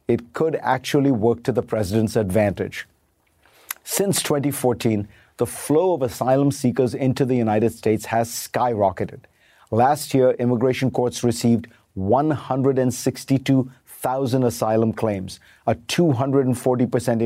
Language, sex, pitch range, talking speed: English, male, 115-135 Hz, 110 wpm